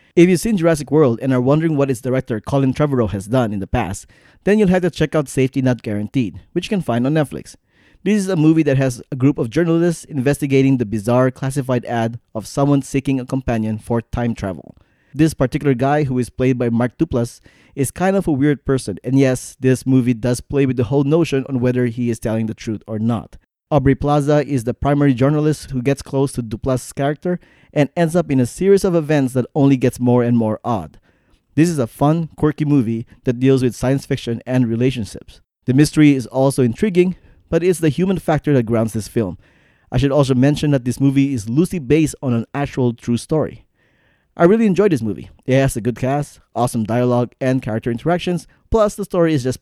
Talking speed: 215 wpm